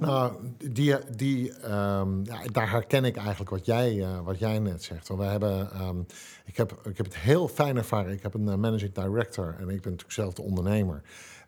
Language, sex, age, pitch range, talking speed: Dutch, male, 50-69, 95-120 Hz, 210 wpm